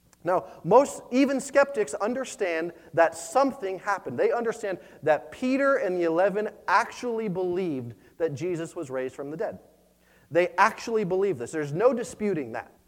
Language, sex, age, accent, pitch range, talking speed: English, male, 30-49, American, 165-230 Hz, 150 wpm